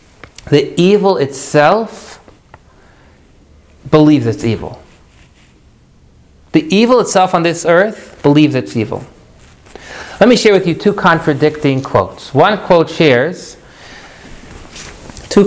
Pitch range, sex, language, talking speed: 130-180 Hz, male, English, 105 wpm